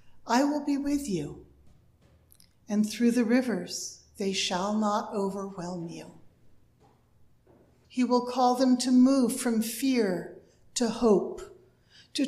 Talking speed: 120 wpm